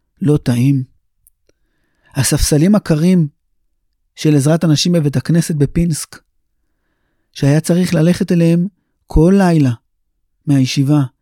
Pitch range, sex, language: 150-210 Hz, male, Hebrew